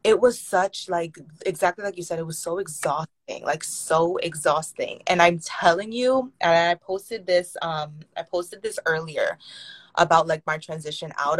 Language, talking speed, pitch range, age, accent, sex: English, 175 wpm, 160-190 Hz, 20-39, American, female